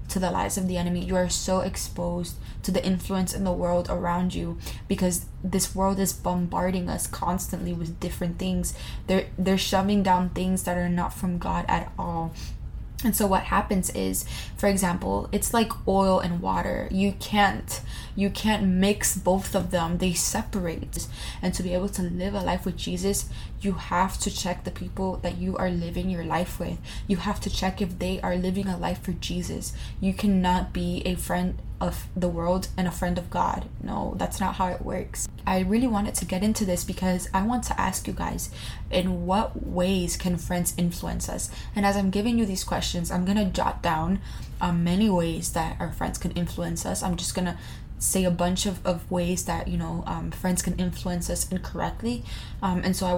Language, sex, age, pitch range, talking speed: English, female, 20-39, 175-190 Hz, 200 wpm